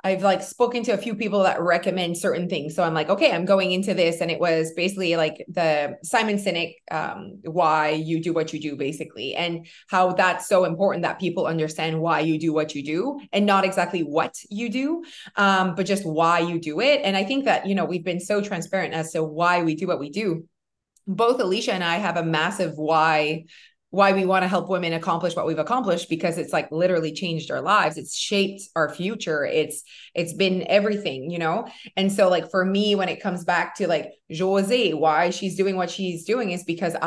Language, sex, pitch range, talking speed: English, female, 165-195 Hz, 220 wpm